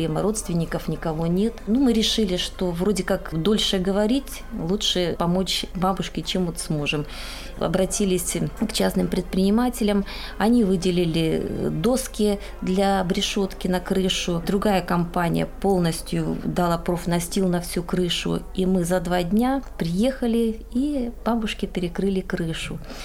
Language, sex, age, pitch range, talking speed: Russian, female, 20-39, 180-220 Hz, 120 wpm